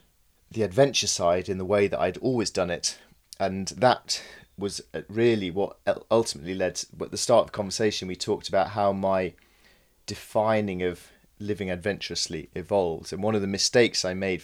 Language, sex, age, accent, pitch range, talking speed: English, male, 30-49, British, 85-105 Hz, 170 wpm